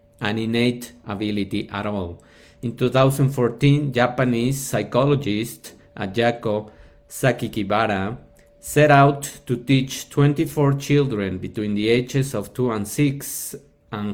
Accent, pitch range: Mexican, 105-135 Hz